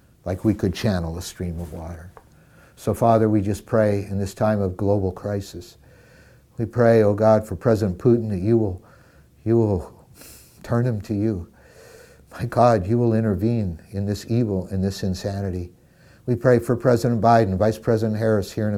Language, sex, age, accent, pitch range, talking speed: English, male, 60-79, American, 95-120 Hz, 180 wpm